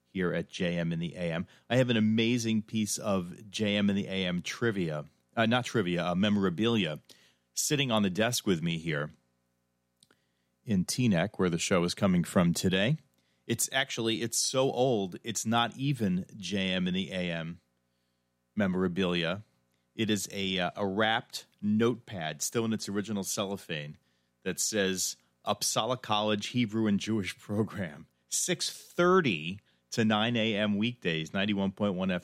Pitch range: 80-110 Hz